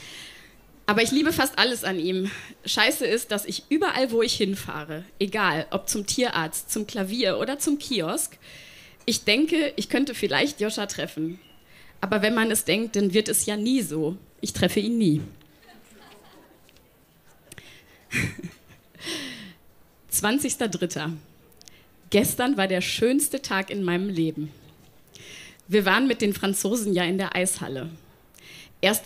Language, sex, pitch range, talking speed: German, female, 185-245 Hz, 135 wpm